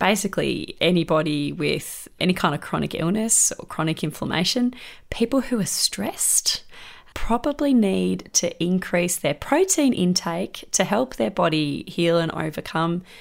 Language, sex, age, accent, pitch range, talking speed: English, female, 20-39, Australian, 165-225 Hz, 130 wpm